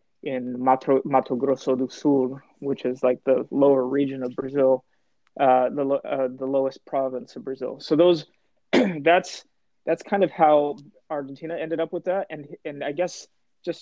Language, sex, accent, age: English, male, American, 20-39